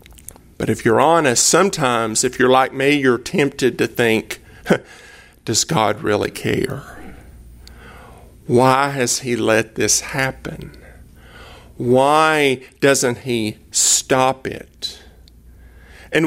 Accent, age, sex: American, 50-69, male